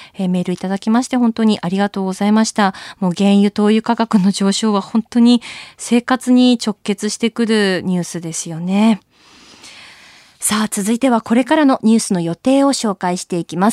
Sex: female